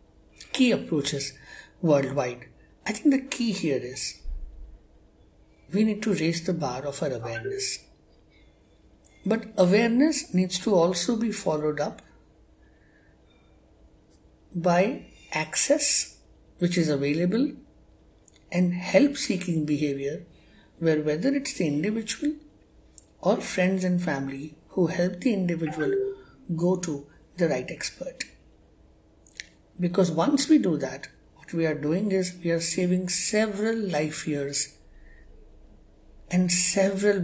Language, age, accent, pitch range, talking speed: English, 60-79, Indian, 140-185 Hz, 115 wpm